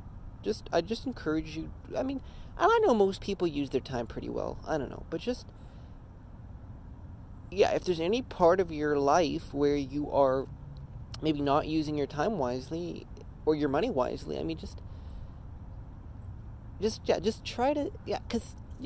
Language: English